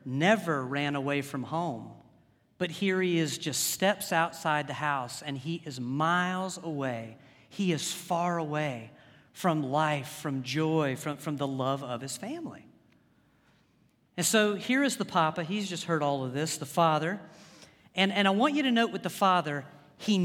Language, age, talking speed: English, 40-59, 175 wpm